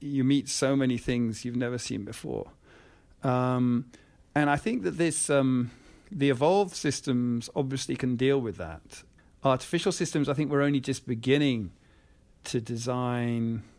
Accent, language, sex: British, English, male